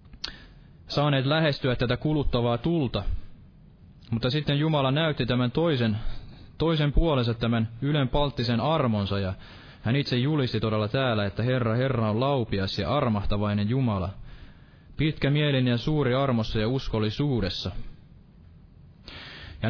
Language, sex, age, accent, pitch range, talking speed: Finnish, male, 20-39, native, 105-135 Hz, 120 wpm